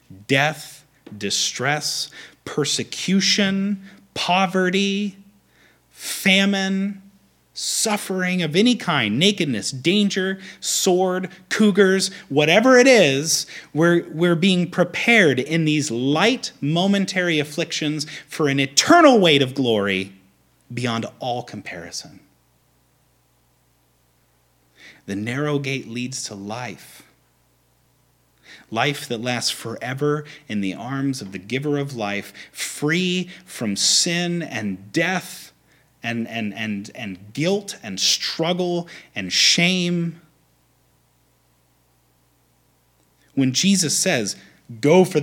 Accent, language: American, English